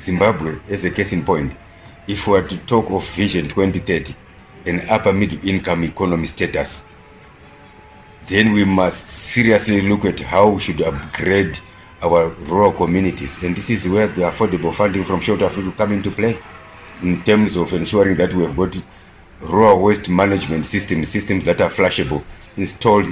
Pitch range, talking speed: 85-100 Hz, 165 wpm